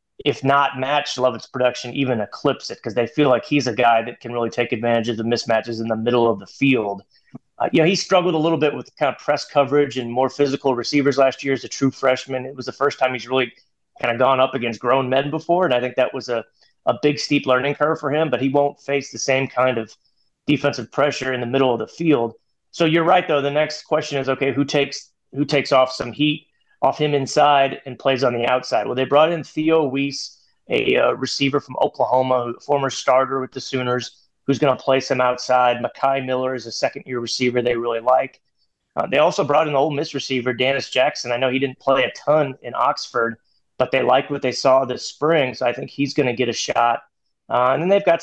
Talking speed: 245 wpm